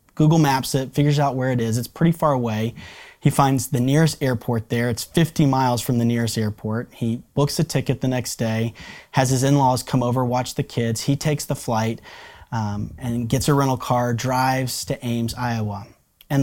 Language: English